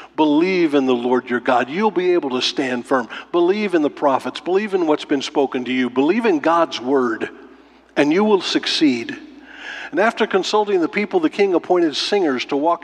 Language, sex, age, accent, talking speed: English, male, 50-69, American, 195 wpm